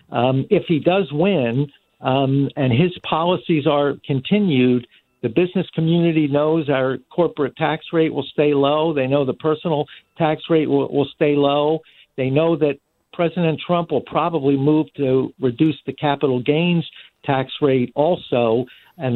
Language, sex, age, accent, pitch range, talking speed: English, male, 50-69, American, 130-155 Hz, 155 wpm